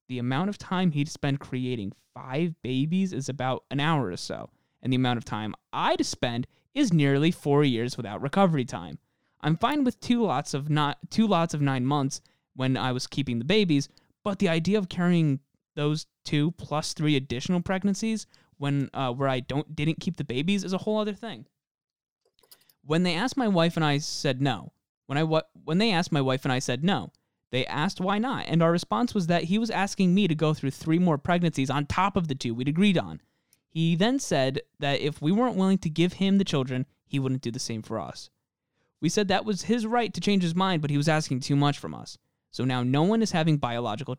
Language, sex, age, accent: English, male, 20-39, American